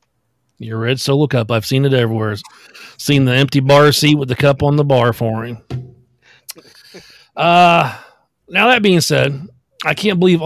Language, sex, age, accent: English, male, 40-59, American